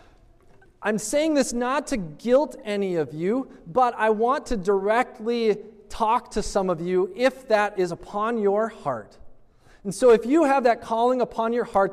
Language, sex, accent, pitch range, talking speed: English, male, American, 160-220 Hz, 175 wpm